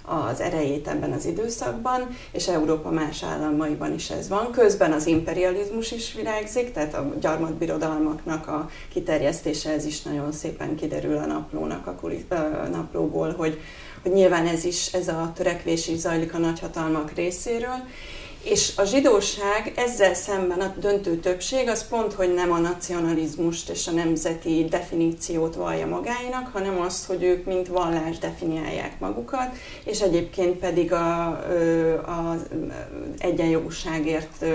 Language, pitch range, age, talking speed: English, 160-185 Hz, 30-49, 135 wpm